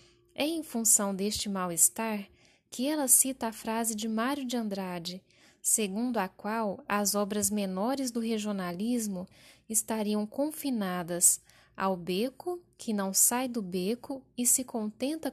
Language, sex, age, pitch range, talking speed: Portuguese, female, 10-29, 200-250 Hz, 135 wpm